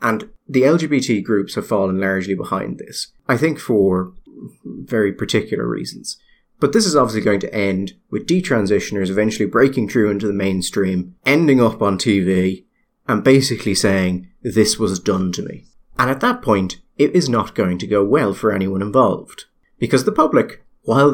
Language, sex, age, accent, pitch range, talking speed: English, male, 30-49, British, 100-135 Hz, 170 wpm